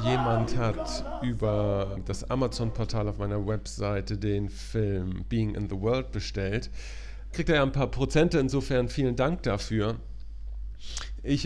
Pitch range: 95-115 Hz